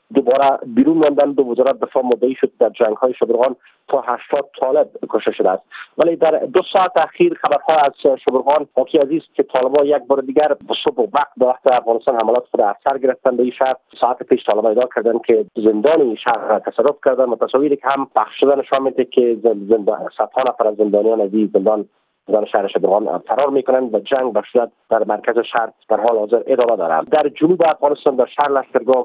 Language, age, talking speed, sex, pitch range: Persian, 40-59, 190 wpm, male, 115-145 Hz